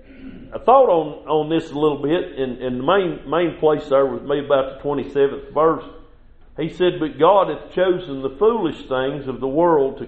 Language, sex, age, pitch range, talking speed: English, male, 50-69, 135-170 Hz, 210 wpm